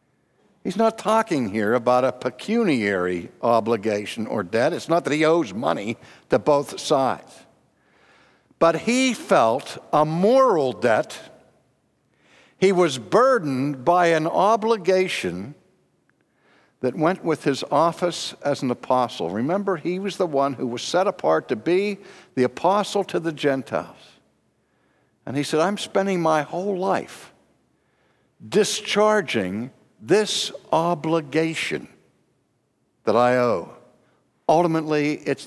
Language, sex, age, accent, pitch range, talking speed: English, male, 60-79, American, 130-185 Hz, 120 wpm